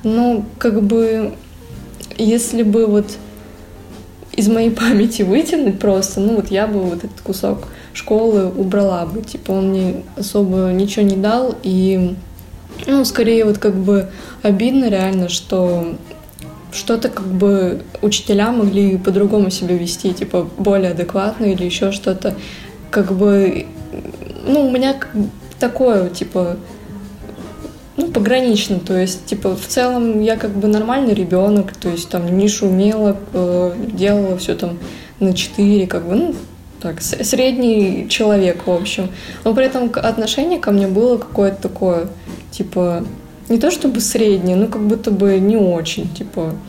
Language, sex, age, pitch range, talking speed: Russian, female, 20-39, 185-225 Hz, 140 wpm